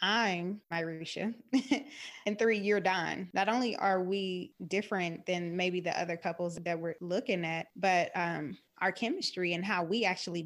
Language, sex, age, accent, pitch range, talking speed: English, female, 20-39, American, 170-190 Hz, 160 wpm